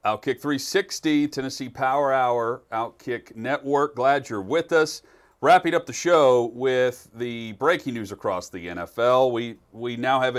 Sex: male